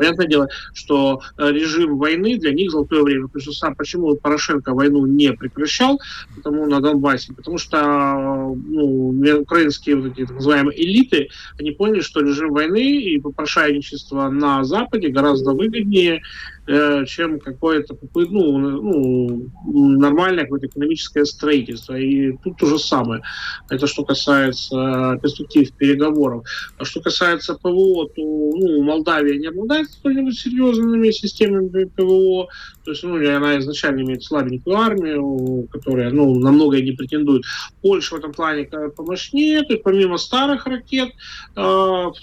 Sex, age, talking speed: male, 30-49, 130 wpm